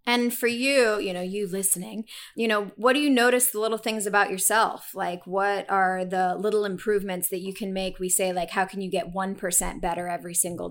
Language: English